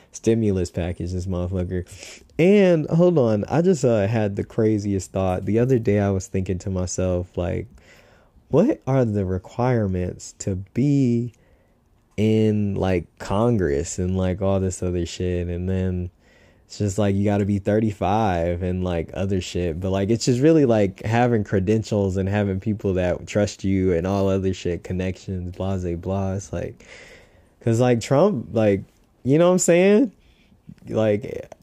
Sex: male